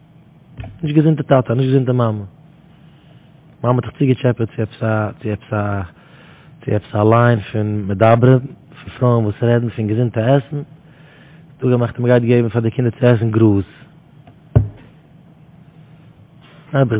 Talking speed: 150 wpm